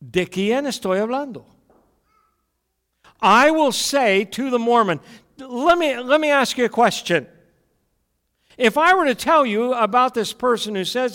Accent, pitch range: American, 170-245 Hz